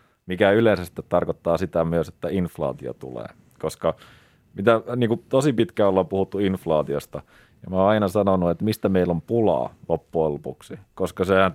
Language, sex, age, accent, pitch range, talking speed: Finnish, male, 30-49, native, 75-95 Hz, 165 wpm